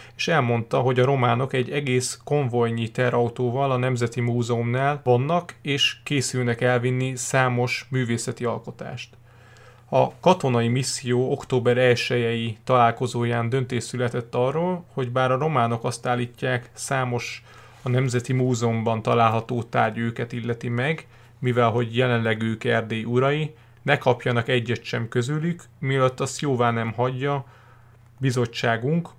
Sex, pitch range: male, 120-130 Hz